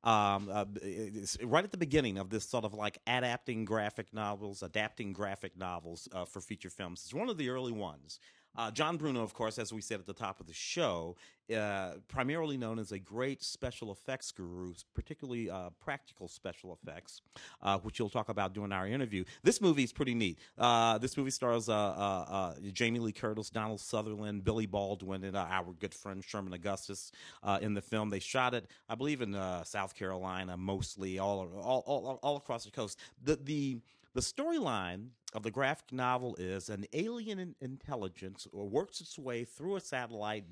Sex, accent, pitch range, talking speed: male, American, 95-125 Hz, 185 wpm